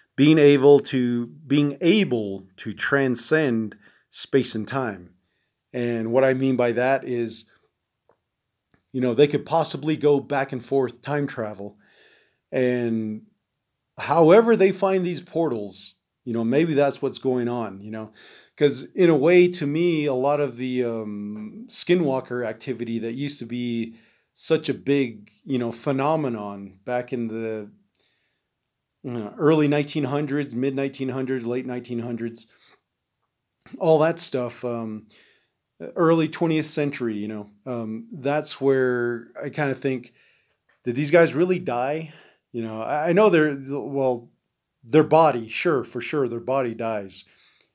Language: English